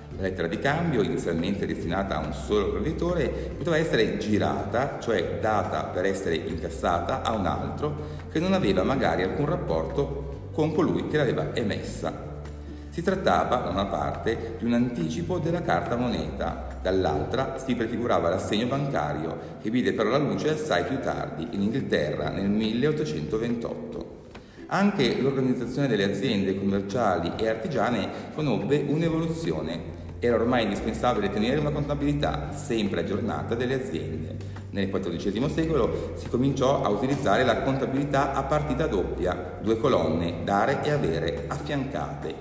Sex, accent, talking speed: male, native, 135 wpm